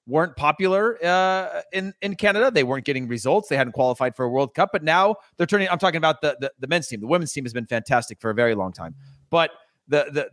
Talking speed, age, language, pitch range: 250 wpm, 30-49, English, 130-165 Hz